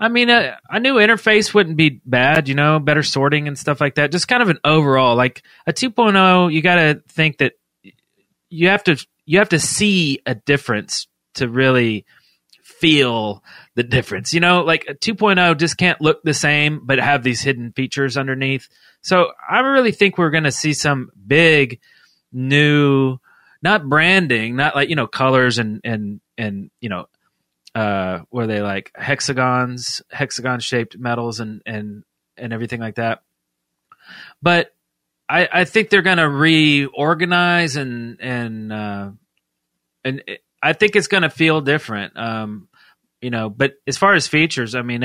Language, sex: English, male